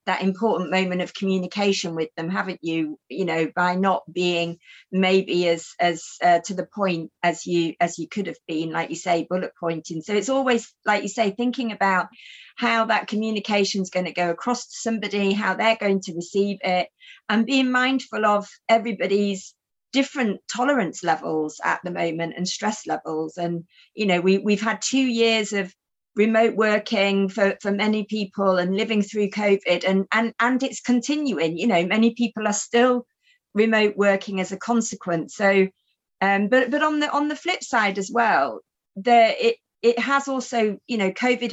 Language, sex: English, female